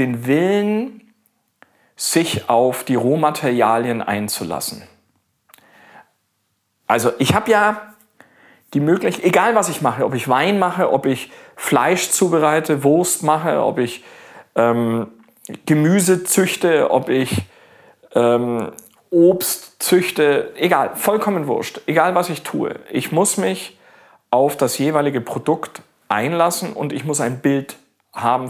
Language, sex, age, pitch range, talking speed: German, male, 40-59, 125-180 Hz, 120 wpm